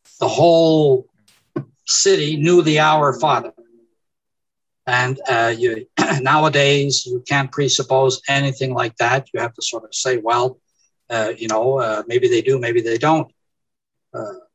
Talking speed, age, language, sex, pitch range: 145 wpm, 60-79, English, male, 135-165 Hz